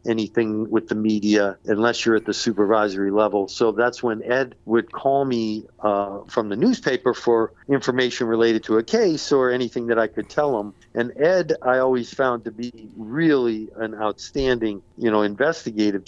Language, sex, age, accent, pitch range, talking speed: English, male, 50-69, American, 110-125 Hz, 175 wpm